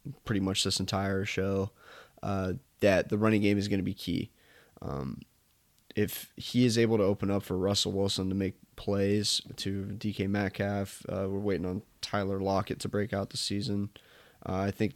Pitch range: 95-110 Hz